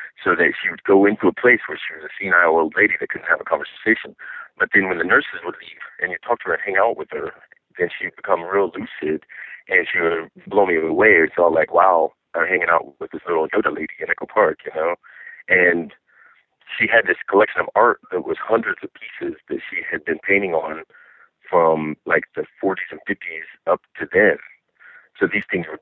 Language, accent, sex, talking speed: English, American, male, 225 wpm